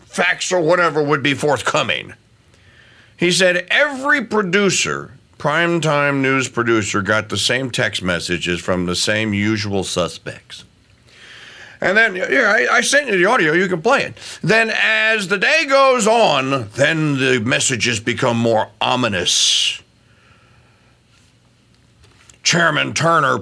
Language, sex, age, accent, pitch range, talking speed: English, male, 50-69, American, 120-180 Hz, 125 wpm